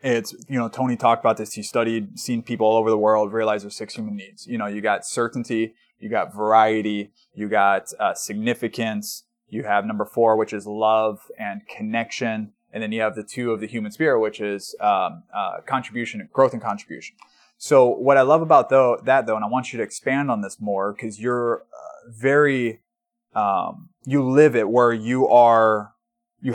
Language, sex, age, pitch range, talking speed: English, male, 20-39, 115-145 Hz, 200 wpm